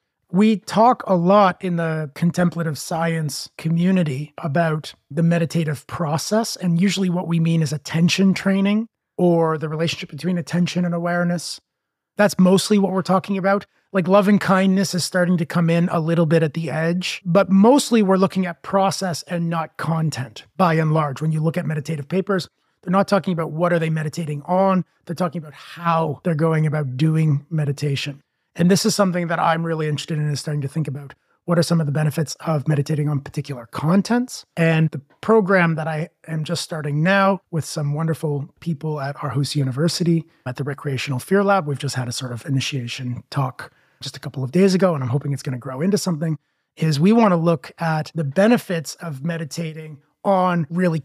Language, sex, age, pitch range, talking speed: English, male, 30-49, 150-180 Hz, 195 wpm